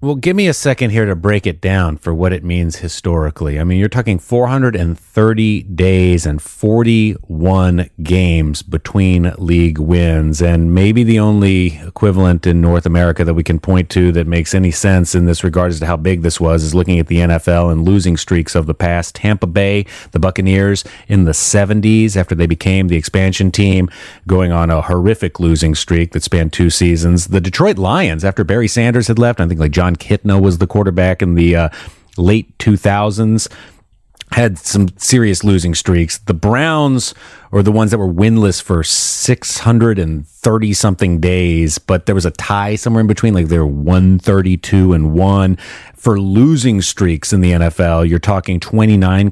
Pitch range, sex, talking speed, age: 85-105 Hz, male, 175 wpm, 30-49